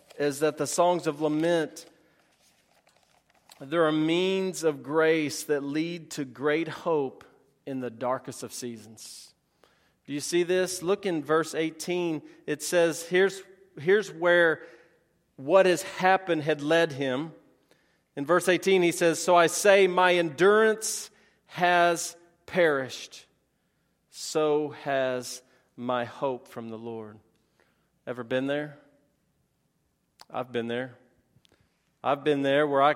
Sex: male